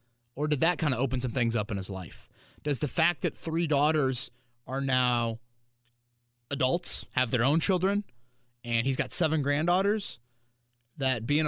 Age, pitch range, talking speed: 30-49, 120-165 Hz, 165 wpm